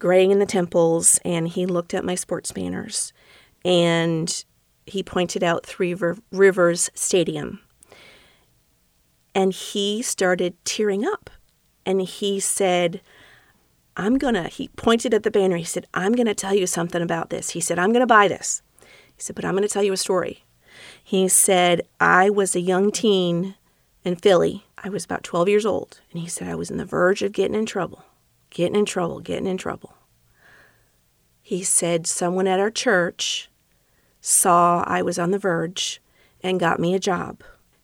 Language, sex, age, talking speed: English, female, 40-59, 170 wpm